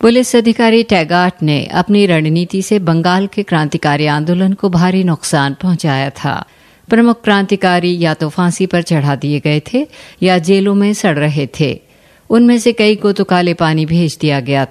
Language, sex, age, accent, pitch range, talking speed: Hindi, female, 50-69, native, 155-200 Hz, 170 wpm